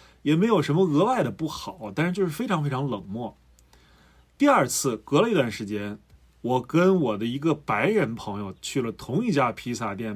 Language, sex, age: Chinese, male, 30-49